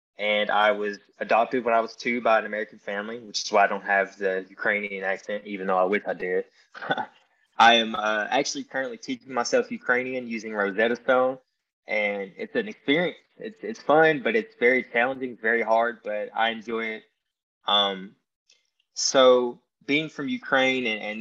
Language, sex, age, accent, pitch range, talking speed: English, male, 20-39, American, 100-120 Hz, 175 wpm